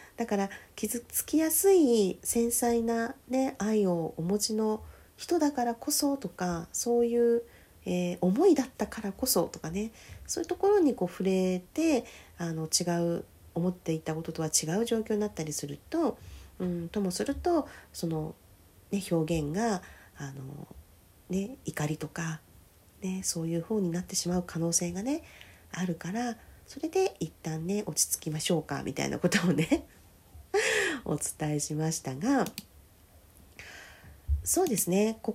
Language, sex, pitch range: Japanese, female, 165-265 Hz